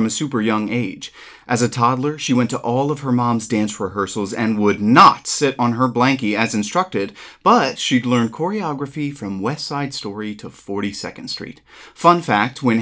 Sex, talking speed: male, 185 wpm